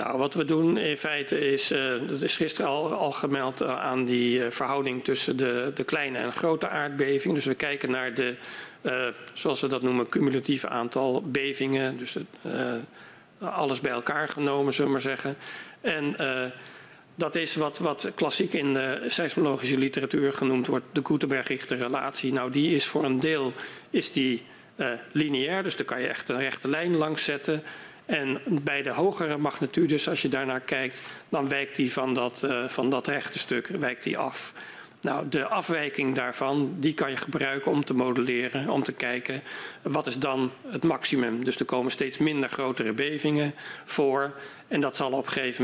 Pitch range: 130-145 Hz